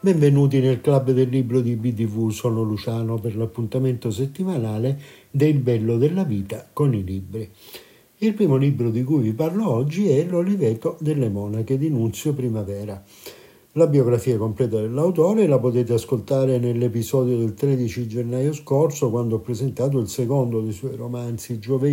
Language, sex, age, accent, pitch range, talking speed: Italian, male, 60-79, native, 120-150 Hz, 155 wpm